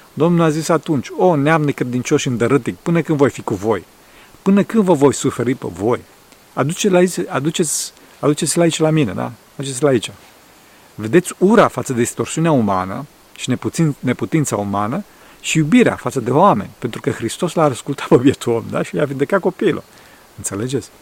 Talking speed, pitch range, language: 170 wpm, 120-155 Hz, Romanian